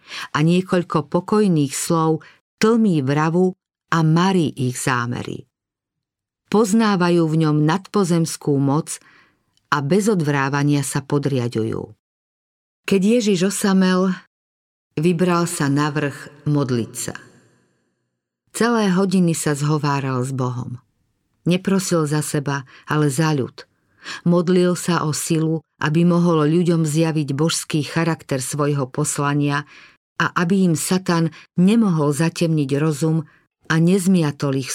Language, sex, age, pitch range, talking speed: Slovak, female, 50-69, 140-180 Hz, 105 wpm